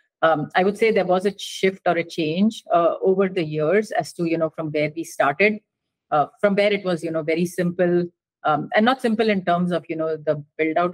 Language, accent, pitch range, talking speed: English, Indian, 155-190 Hz, 240 wpm